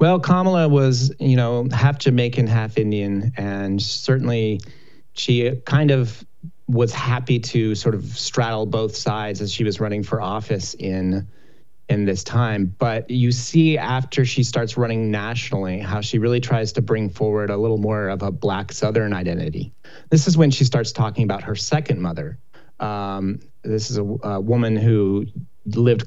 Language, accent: English, American